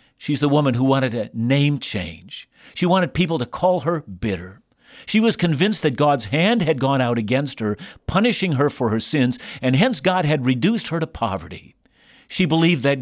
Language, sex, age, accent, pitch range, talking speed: English, male, 50-69, American, 120-170 Hz, 195 wpm